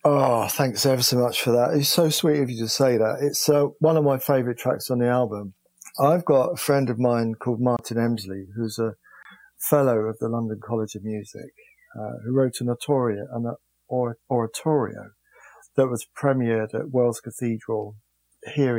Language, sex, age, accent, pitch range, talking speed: English, male, 40-59, British, 115-145 Hz, 180 wpm